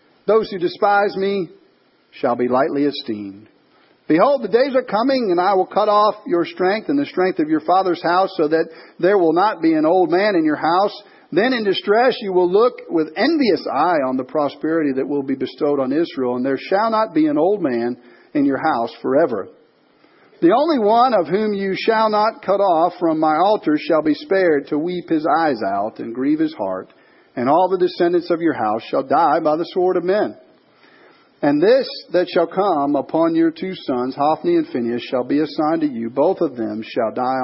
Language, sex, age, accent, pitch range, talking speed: English, male, 50-69, American, 160-270 Hz, 210 wpm